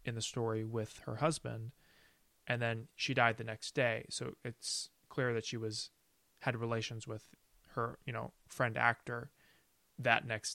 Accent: American